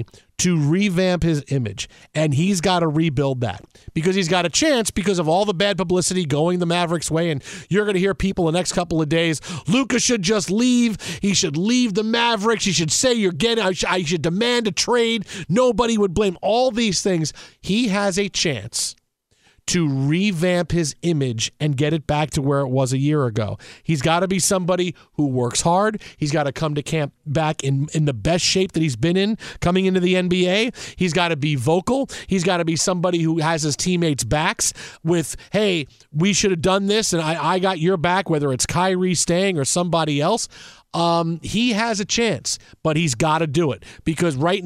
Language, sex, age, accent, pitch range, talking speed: English, male, 40-59, American, 155-190 Hz, 210 wpm